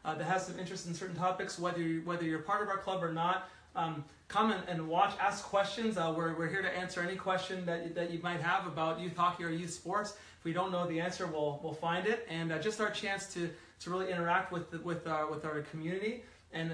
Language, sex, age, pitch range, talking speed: English, male, 30-49, 165-185 Hz, 255 wpm